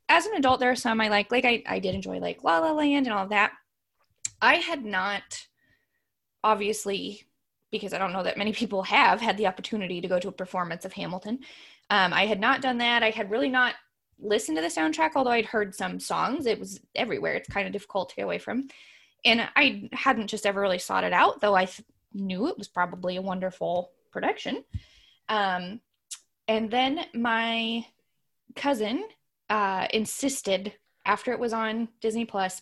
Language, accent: English, American